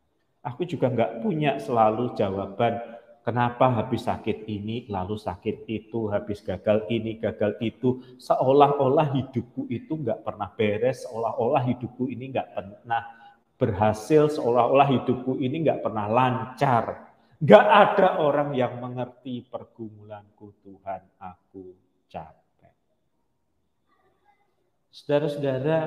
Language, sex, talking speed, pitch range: Malay, male, 105 wpm, 105-135 Hz